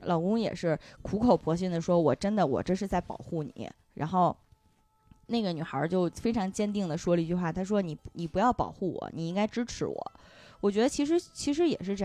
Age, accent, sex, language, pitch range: 20-39, native, female, Chinese, 175-240 Hz